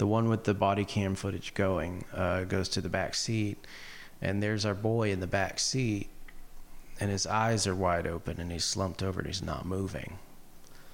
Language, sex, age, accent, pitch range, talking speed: English, male, 30-49, American, 95-105 Hz, 195 wpm